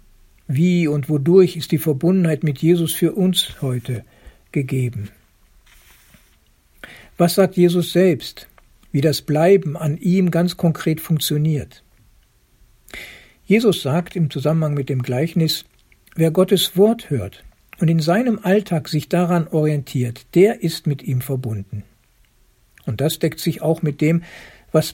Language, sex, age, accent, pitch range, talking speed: German, male, 60-79, German, 130-170 Hz, 130 wpm